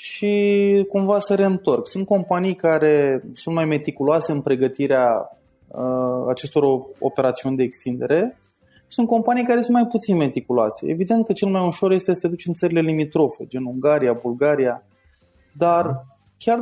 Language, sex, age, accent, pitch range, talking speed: Romanian, male, 20-39, native, 135-180 Hz, 145 wpm